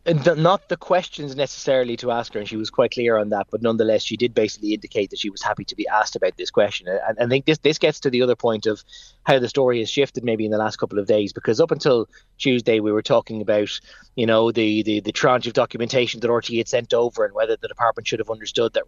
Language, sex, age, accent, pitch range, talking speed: English, male, 20-39, Irish, 110-150 Hz, 260 wpm